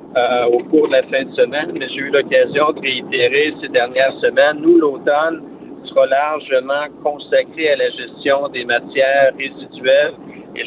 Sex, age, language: male, 50-69, French